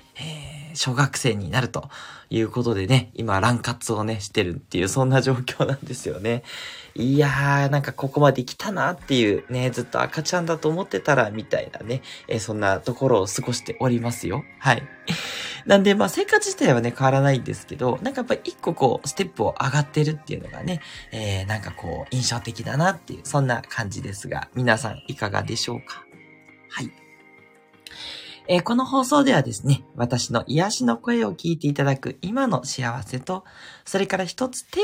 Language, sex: Japanese, male